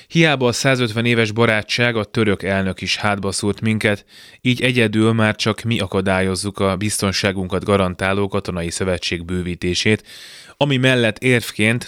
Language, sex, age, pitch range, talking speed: Hungarian, male, 20-39, 95-110 Hz, 130 wpm